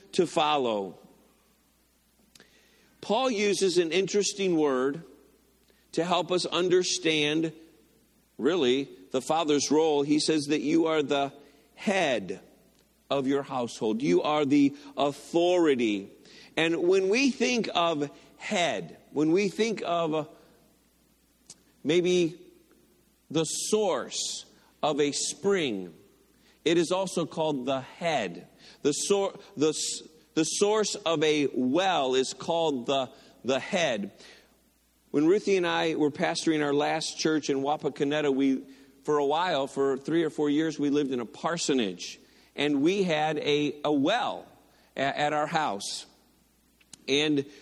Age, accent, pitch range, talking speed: 50-69, American, 140-170 Hz, 125 wpm